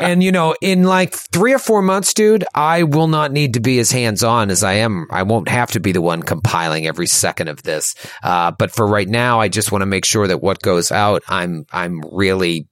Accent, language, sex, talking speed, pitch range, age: American, English, male, 245 wpm, 90-125 Hz, 30-49